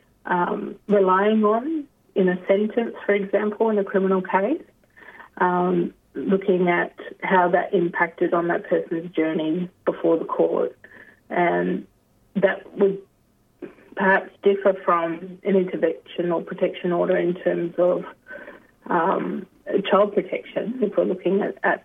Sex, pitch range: female, 175-200 Hz